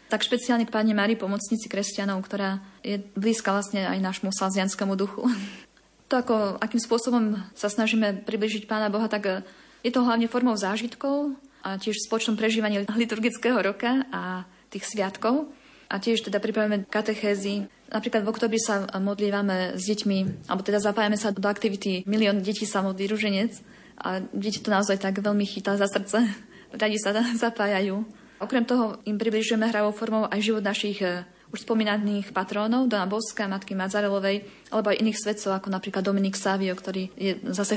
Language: Slovak